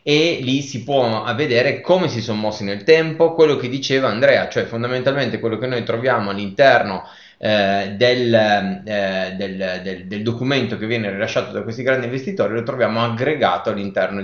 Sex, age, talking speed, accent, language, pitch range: male, 20-39, 170 wpm, native, Italian, 100-130 Hz